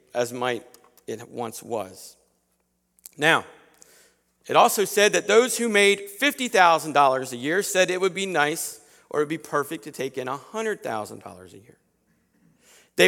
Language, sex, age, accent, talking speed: English, male, 50-69, American, 150 wpm